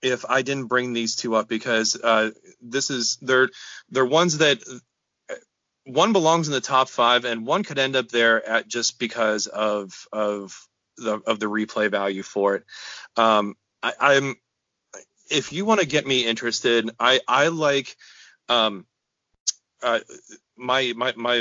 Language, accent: English, American